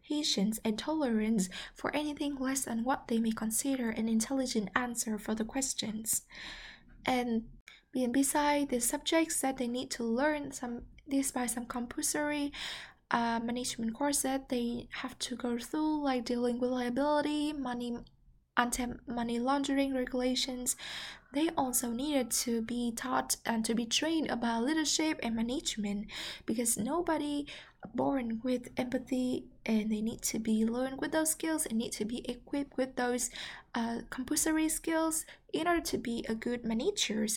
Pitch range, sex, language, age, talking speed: 230-285 Hz, female, English, 10-29, 150 wpm